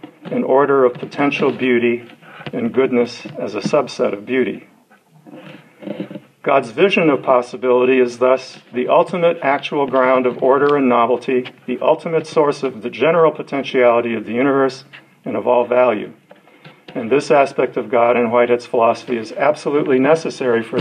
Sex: male